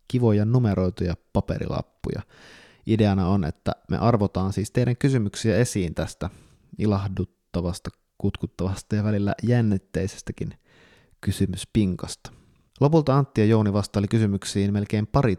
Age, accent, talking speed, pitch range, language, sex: 20-39, native, 105 wpm, 95-115 Hz, Finnish, male